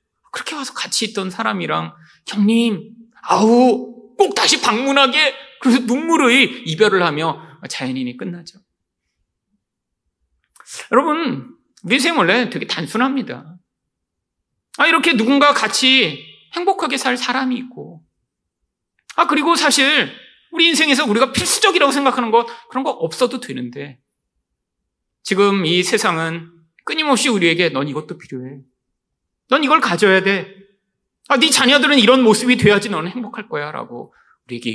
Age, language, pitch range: 40-59, Korean, 170-270 Hz